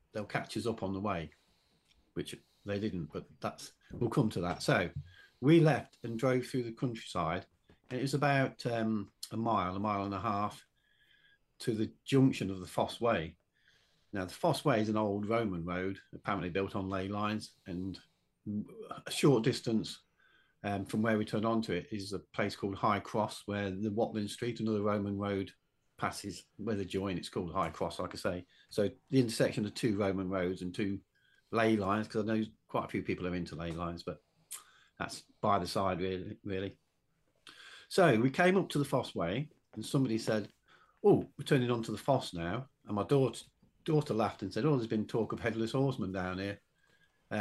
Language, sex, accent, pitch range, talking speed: English, male, British, 95-125 Hz, 200 wpm